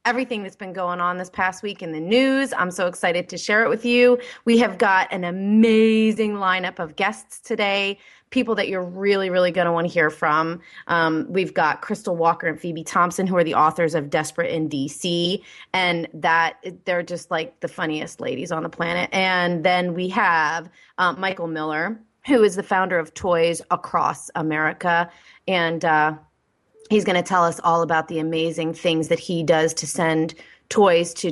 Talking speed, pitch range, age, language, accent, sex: 190 wpm, 160-200 Hz, 30-49, English, American, female